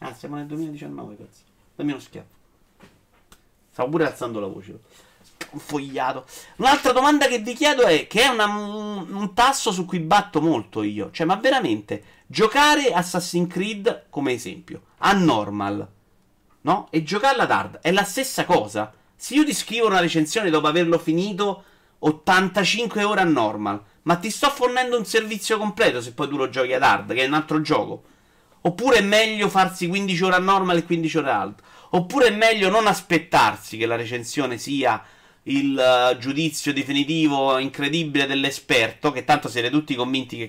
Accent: native